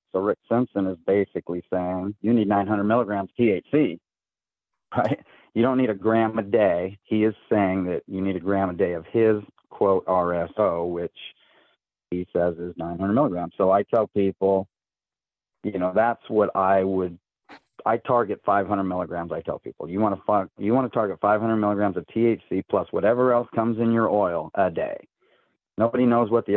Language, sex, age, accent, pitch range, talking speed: English, male, 40-59, American, 90-110 Hz, 185 wpm